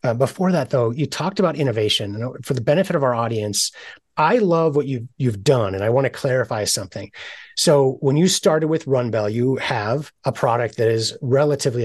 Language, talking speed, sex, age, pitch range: English, 210 wpm, male, 30-49, 110-145 Hz